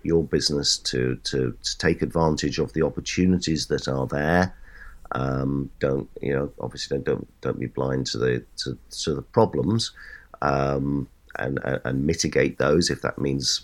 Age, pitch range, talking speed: 50-69, 65-80 Hz, 165 wpm